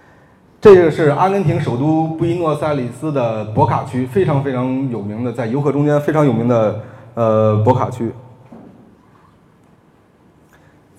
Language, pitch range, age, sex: Chinese, 115-145 Hz, 30-49, male